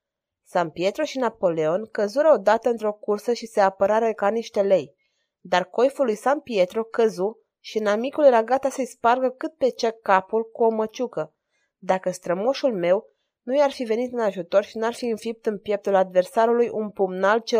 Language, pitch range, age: Romanian, 195-250 Hz, 20-39